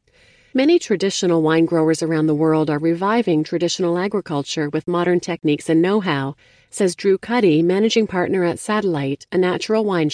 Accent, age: American, 40-59